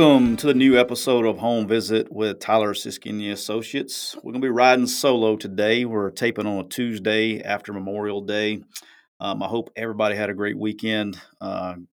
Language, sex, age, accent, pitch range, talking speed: English, male, 30-49, American, 100-115 Hz, 180 wpm